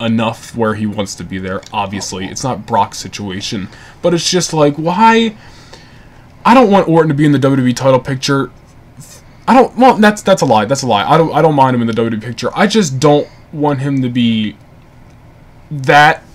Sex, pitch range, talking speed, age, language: male, 115-140 Hz, 205 wpm, 20-39, English